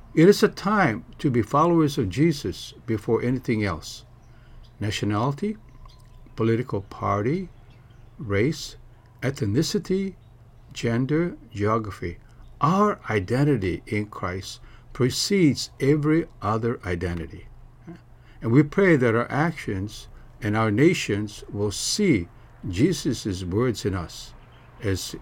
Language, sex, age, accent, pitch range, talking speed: English, male, 60-79, American, 105-145 Hz, 100 wpm